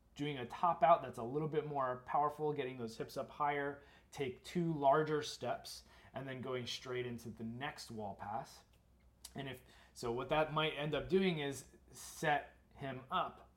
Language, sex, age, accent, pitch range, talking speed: English, male, 30-49, American, 105-140 Hz, 180 wpm